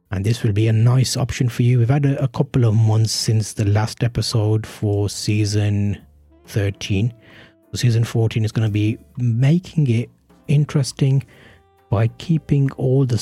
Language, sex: English, male